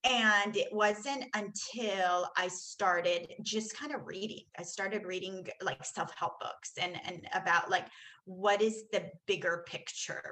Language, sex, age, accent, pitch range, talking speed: English, female, 30-49, American, 185-255 Hz, 145 wpm